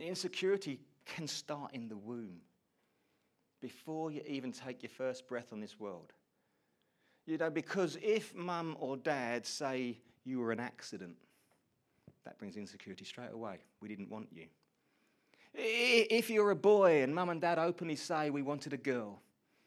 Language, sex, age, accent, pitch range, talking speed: English, male, 30-49, British, 130-180 Hz, 155 wpm